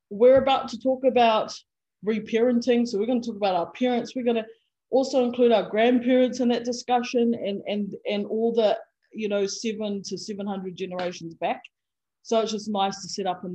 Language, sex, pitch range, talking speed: English, female, 195-240 Hz, 195 wpm